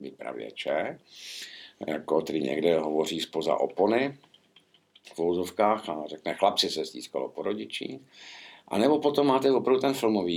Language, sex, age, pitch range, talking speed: Czech, male, 60-79, 75-100 Hz, 125 wpm